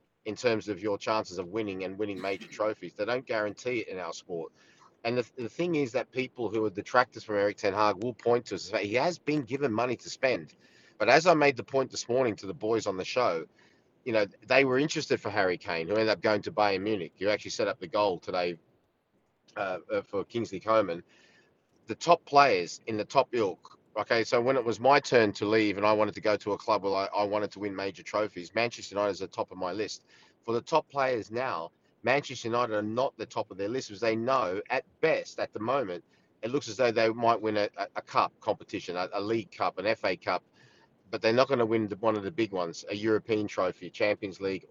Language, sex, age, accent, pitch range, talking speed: English, male, 30-49, Australian, 105-120 Hz, 240 wpm